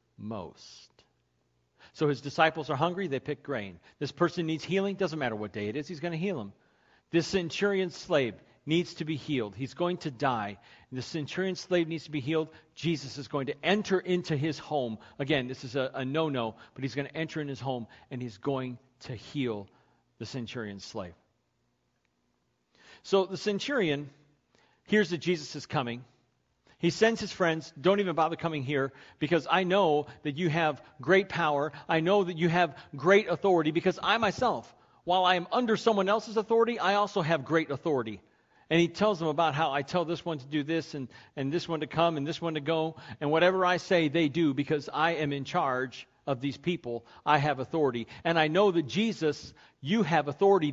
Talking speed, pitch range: 200 wpm, 135-175 Hz